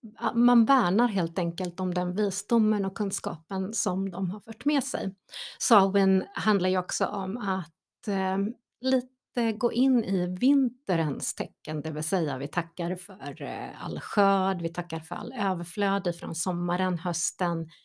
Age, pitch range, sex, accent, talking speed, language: 30-49, 180-230 Hz, female, native, 150 wpm, Swedish